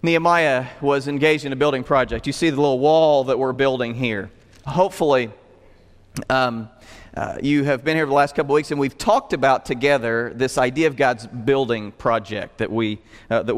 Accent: American